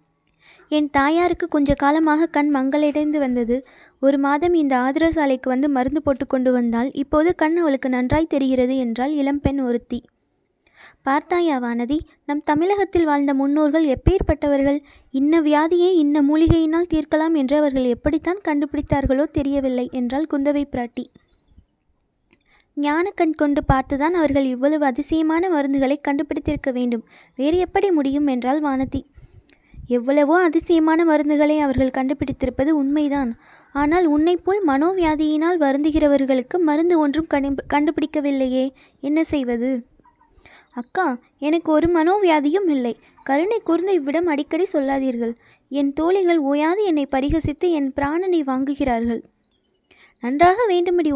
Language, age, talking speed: Tamil, 20-39, 115 wpm